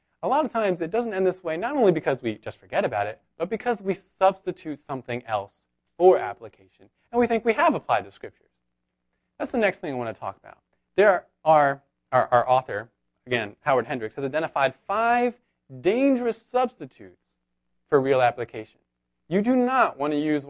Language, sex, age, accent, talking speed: English, male, 20-39, American, 185 wpm